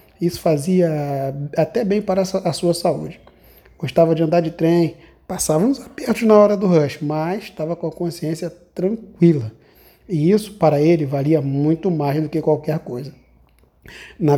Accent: Brazilian